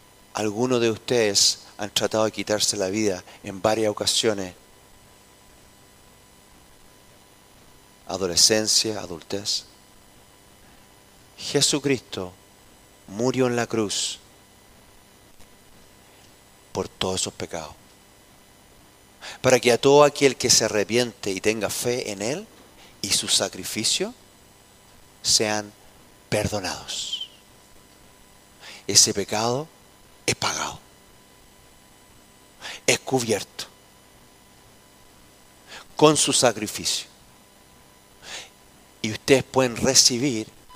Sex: male